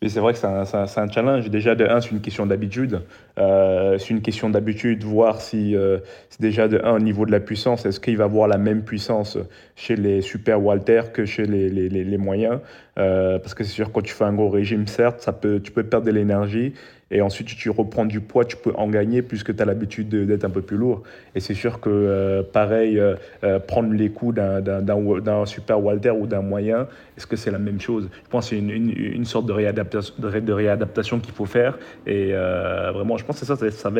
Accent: French